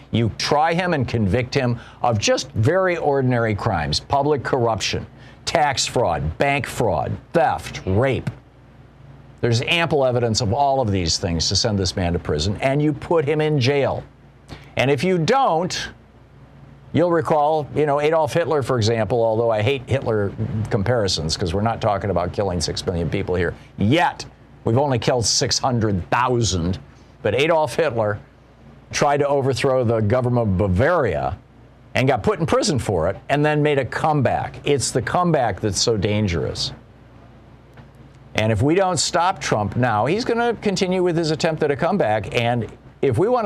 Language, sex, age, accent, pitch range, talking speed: English, male, 50-69, American, 110-150 Hz, 165 wpm